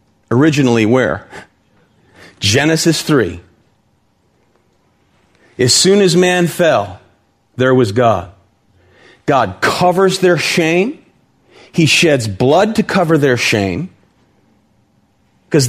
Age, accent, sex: 40-59, American, male